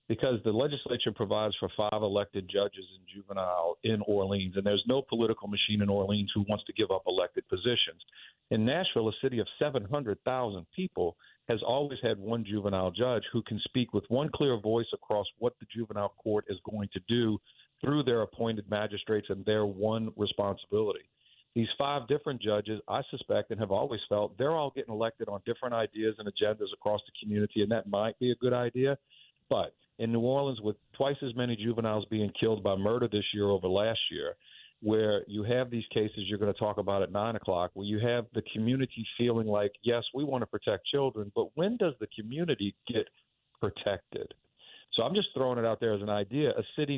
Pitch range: 105-120 Hz